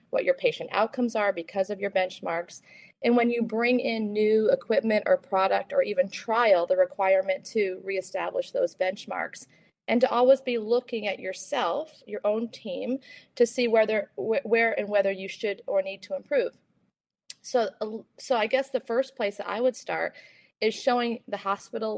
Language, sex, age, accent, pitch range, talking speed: English, female, 40-59, American, 200-255 Hz, 175 wpm